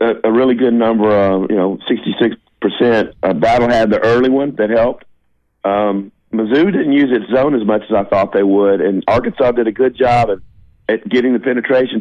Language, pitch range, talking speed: English, 100-125 Hz, 200 wpm